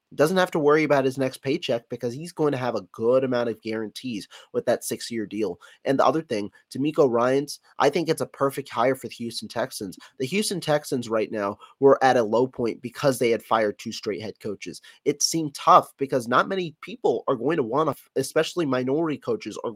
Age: 30-49